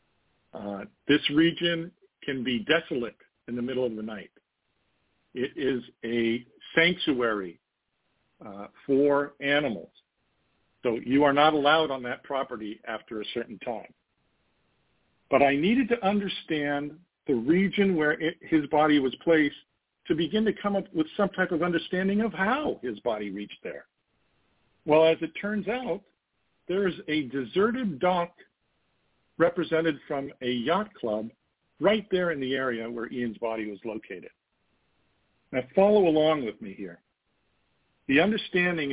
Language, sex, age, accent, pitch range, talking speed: English, male, 50-69, American, 125-170 Hz, 145 wpm